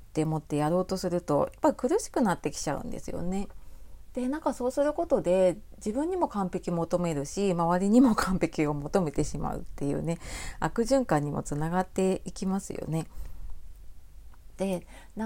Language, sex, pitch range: Japanese, female, 160-265 Hz